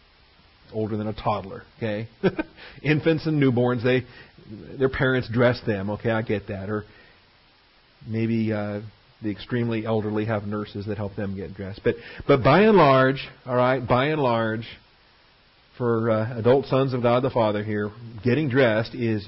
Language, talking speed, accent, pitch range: English, 160 wpm, American, 105-130 Hz